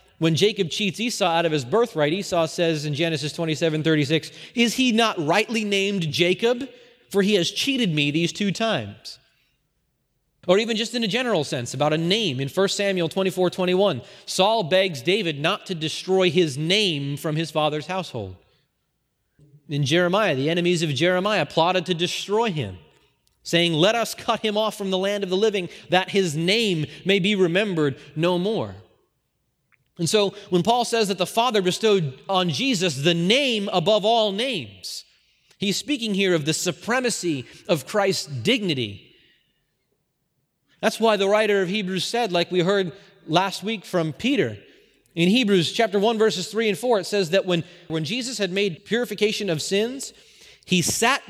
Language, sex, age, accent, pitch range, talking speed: English, male, 30-49, American, 160-210 Hz, 170 wpm